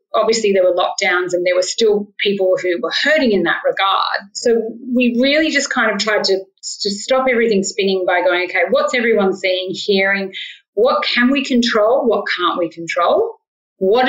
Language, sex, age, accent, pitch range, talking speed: English, female, 30-49, Australian, 190-240 Hz, 185 wpm